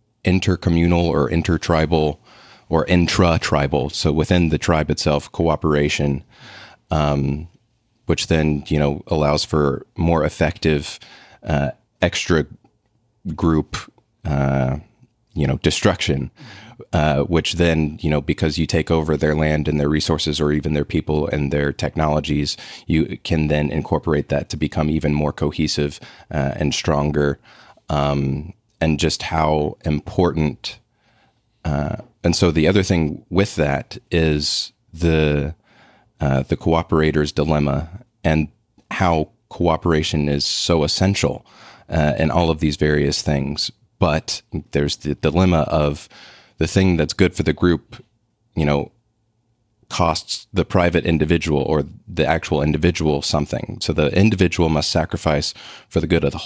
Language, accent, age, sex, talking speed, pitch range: English, American, 30-49, male, 135 wpm, 75-90 Hz